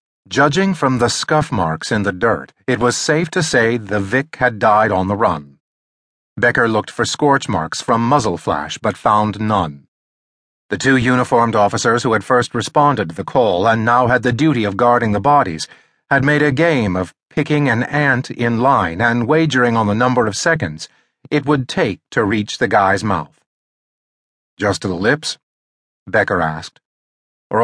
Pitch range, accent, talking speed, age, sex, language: 105-135 Hz, American, 180 wpm, 40-59, male, English